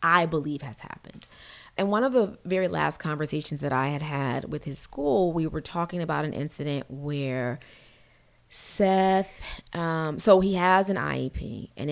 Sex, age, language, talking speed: female, 30-49, English, 165 wpm